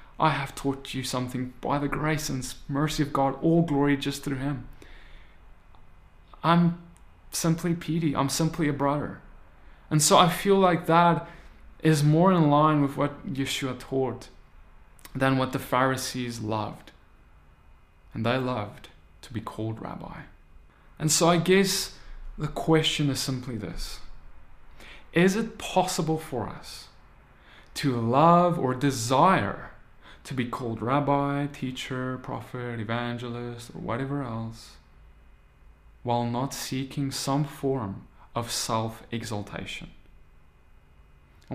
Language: English